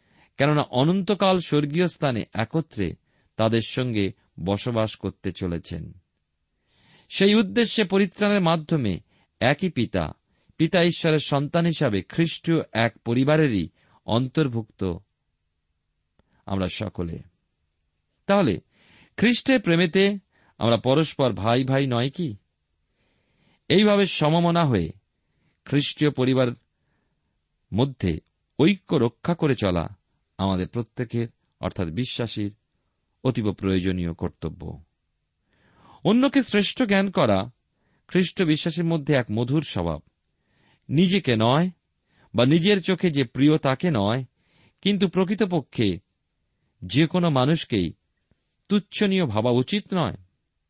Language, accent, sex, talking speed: Bengali, native, male, 75 wpm